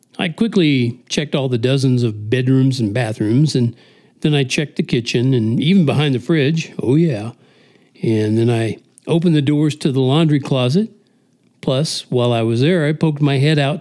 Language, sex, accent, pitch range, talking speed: English, male, American, 130-195 Hz, 185 wpm